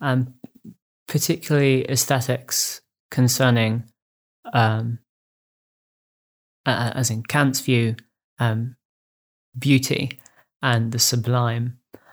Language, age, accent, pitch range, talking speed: English, 20-39, British, 120-135 Hz, 80 wpm